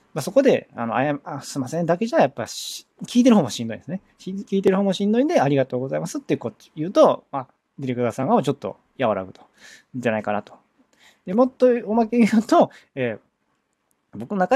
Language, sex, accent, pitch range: Japanese, male, native, 120-195 Hz